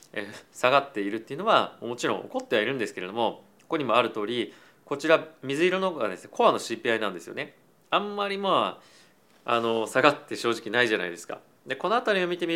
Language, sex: Japanese, male